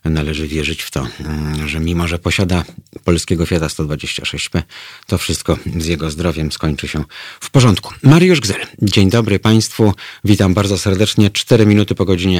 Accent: native